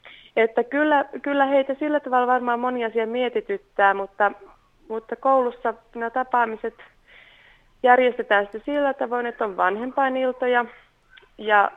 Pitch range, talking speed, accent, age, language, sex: 190-230 Hz, 110 wpm, native, 30-49, Finnish, female